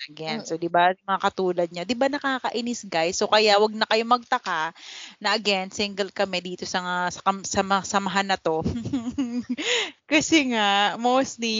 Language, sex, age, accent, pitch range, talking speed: Filipino, female, 20-39, native, 180-230 Hz, 170 wpm